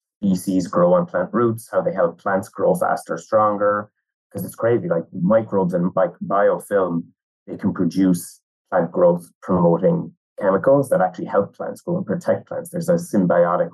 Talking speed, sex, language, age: 160 wpm, male, English, 30-49